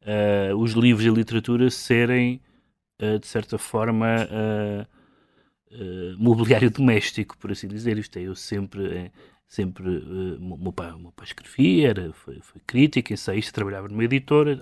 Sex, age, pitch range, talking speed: male, 30-49, 105-125 Hz, 150 wpm